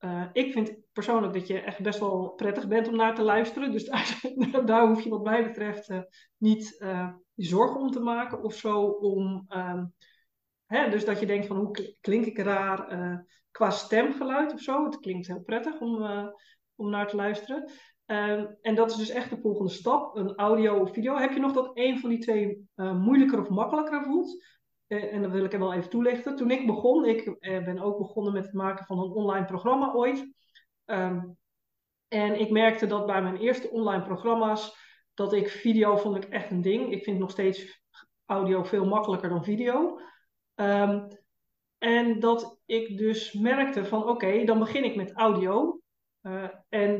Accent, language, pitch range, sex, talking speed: Dutch, Dutch, 195-235 Hz, female, 190 wpm